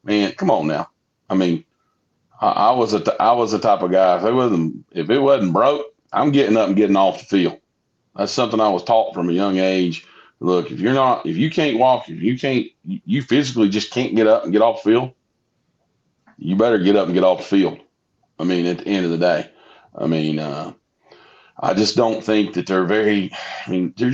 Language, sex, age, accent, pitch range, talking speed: English, male, 40-59, American, 90-105 Hz, 230 wpm